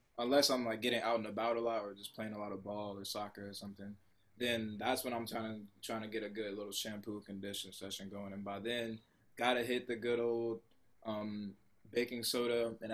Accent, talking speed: American, 225 wpm